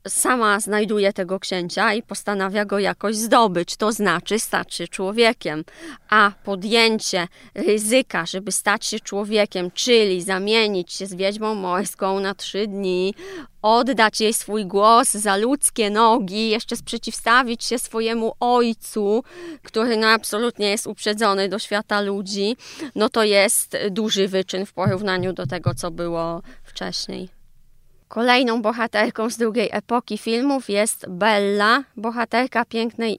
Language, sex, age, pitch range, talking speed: Polish, female, 20-39, 200-240 Hz, 130 wpm